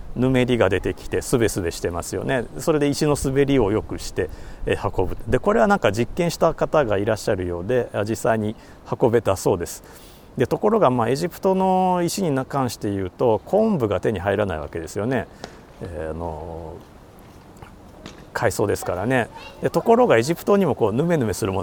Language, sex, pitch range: Japanese, male, 95-140 Hz